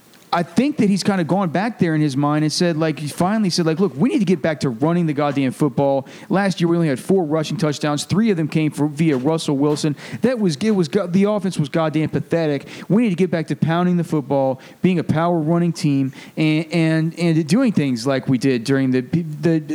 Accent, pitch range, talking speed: American, 160-210 Hz, 240 wpm